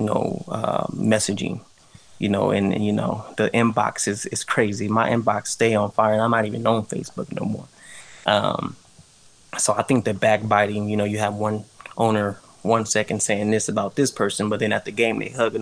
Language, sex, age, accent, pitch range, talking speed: English, male, 20-39, American, 105-110 Hz, 205 wpm